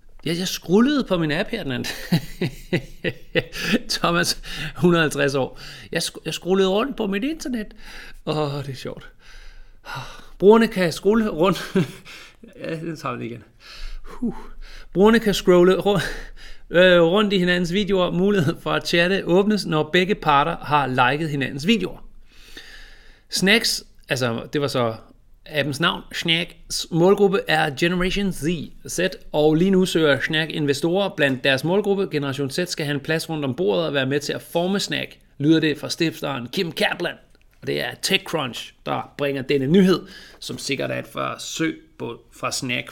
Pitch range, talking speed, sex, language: 145-195 Hz, 160 wpm, male, Danish